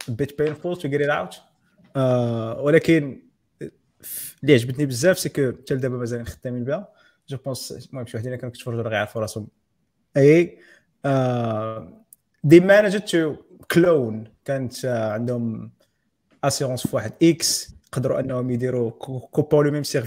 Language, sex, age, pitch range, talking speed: Arabic, male, 20-39, 120-145 Hz, 50 wpm